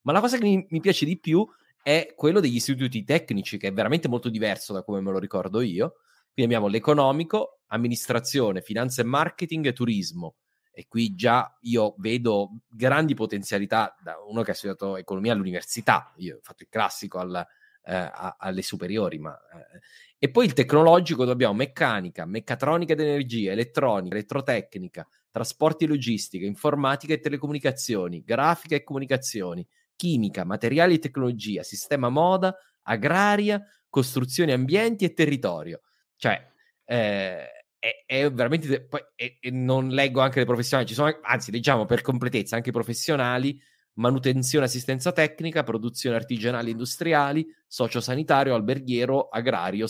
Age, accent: 30-49, native